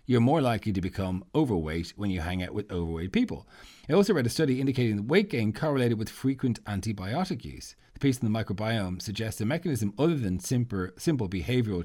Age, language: 40-59, English